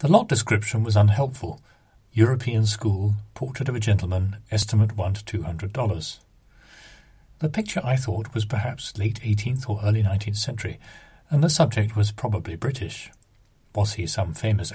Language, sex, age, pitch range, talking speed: English, male, 40-59, 105-130 Hz, 160 wpm